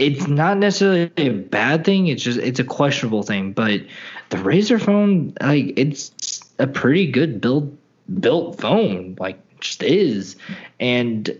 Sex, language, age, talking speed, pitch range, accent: male, English, 20-39, 155 wpm, 120-145 Hz, American